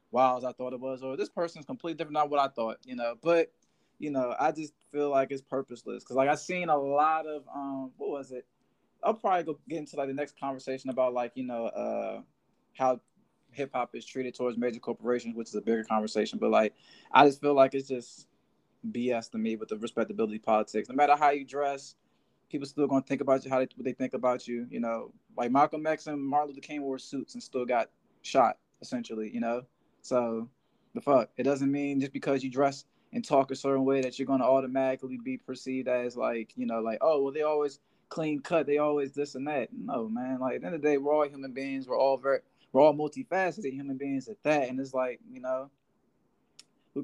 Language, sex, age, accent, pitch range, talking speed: English, male, 20-39, American, 125-150 Hz, 230 wpm